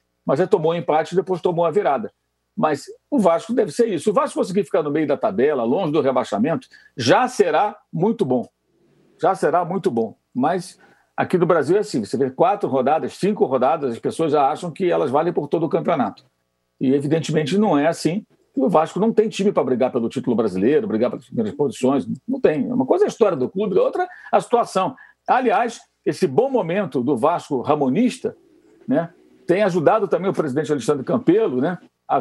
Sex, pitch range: male, 165-270 Hz